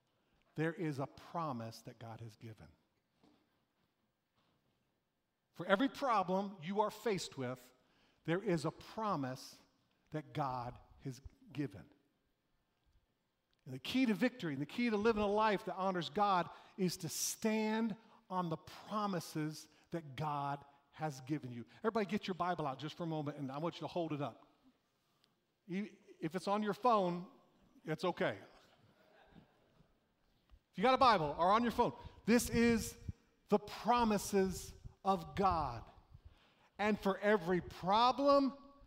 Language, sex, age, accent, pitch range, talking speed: English, male, 50-69, American, 150-220 Hz, 140 wpm